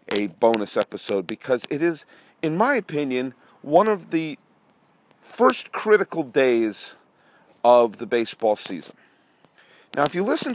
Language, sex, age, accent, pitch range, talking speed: English, male, 40-59, American, 115-165 Hz, 130 wpm